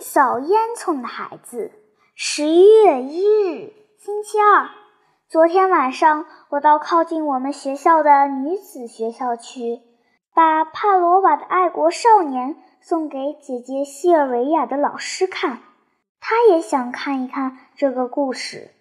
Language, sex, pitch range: Chinese, male, 275-365 Hz